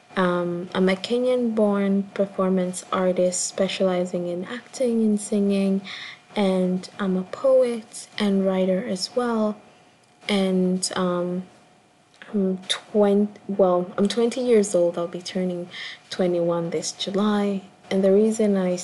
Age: 20-39